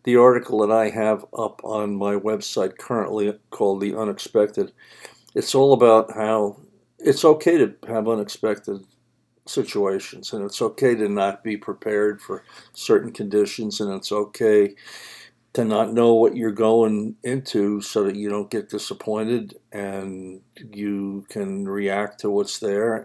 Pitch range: 100-125 Hz